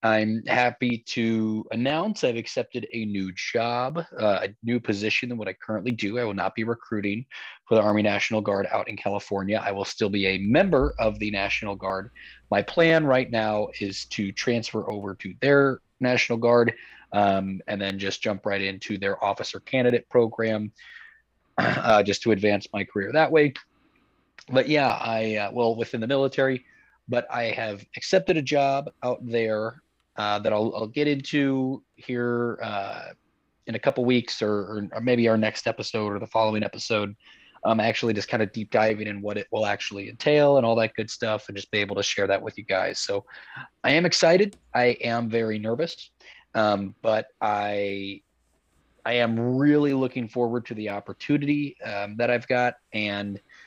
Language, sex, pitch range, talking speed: English, male, 105-120 Hz, 180 wpm